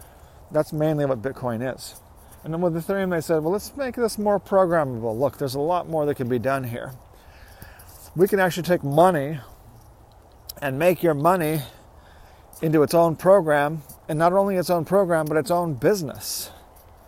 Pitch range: 115-175 Hz